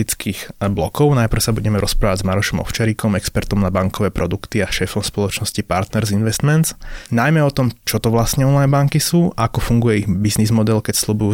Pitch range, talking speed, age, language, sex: 100-120 Hz, 175 wpm, 20-39, Slovak, male